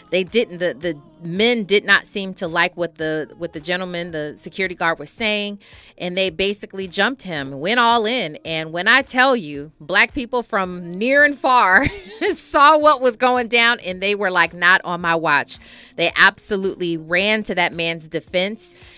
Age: 30-49